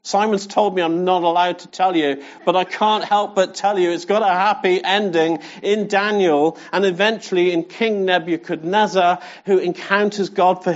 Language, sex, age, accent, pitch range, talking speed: English, male, 50-69, British, 165-200 Hz, 180 wpm